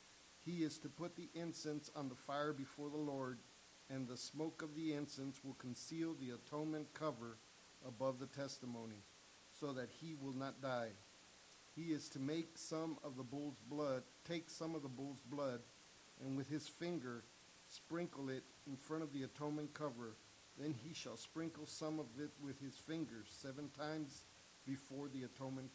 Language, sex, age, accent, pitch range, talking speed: English, male, 50-69, American, 130-155 Hz, 170 wpm